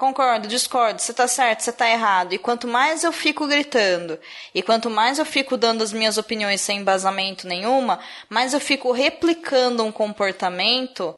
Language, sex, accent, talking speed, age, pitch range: Portuguese, female, Brazilian, 170 wpm, 20-39, 205-260 Hz